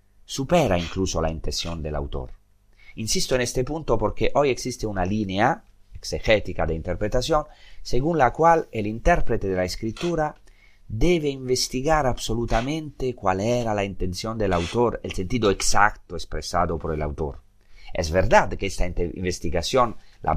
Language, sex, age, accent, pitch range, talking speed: Spanish, male, 30-49, Italian, 85-120 Hz, 140 wpm